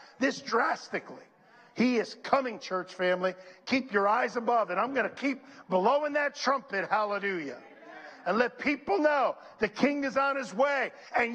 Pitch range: 185-270 Hz